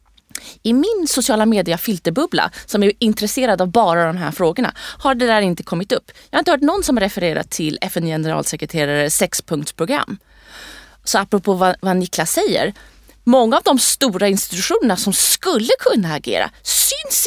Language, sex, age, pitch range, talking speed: Swedish, female, 30-49, 180-260 Hz, 155 wpm